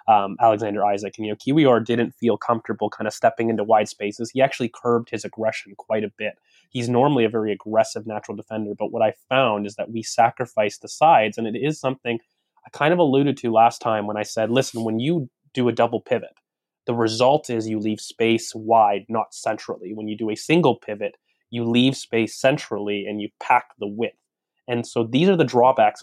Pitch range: 110-120 Hz